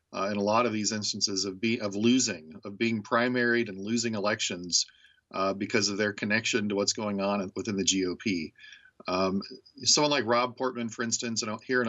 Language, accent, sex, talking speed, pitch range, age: English, American, male, 195 wpm, 105-125 Hz, 40-59